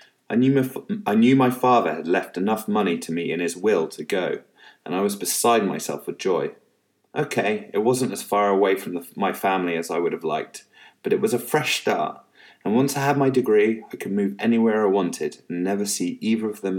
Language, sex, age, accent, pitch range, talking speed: English, male, 30-49, British, 90-130 Hz, 215 wpm